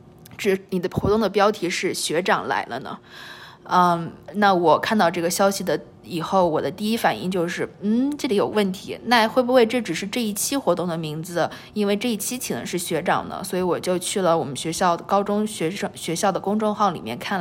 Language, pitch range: Chinese, 175-215 Hz